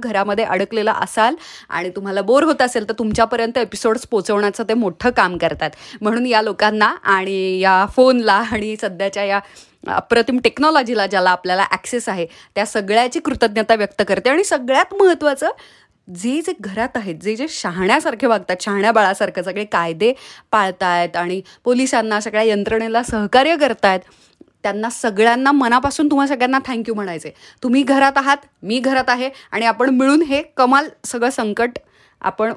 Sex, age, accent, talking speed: female, 30-49, native, 145 wpm